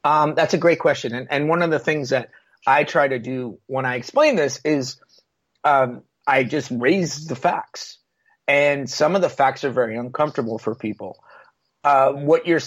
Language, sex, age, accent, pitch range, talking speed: English, male, 30-49, American, 130-155 Hz, 190 wpm